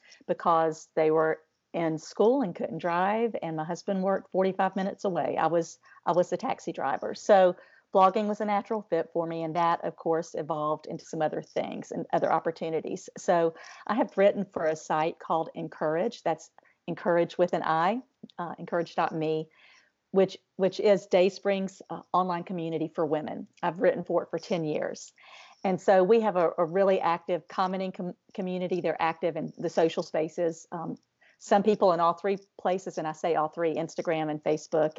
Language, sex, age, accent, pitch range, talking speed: English, female, 50-69, American, 160-195 Hz, 180 wpm